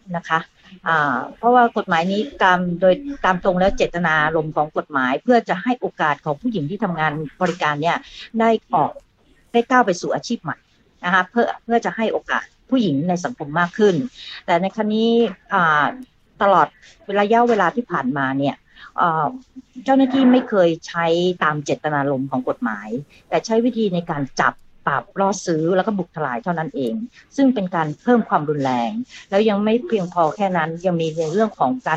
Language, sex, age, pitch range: Thai, female, 60-79, 155-220 Hz